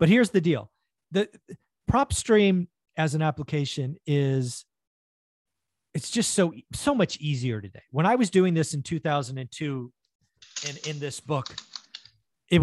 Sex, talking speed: male, 140 wpm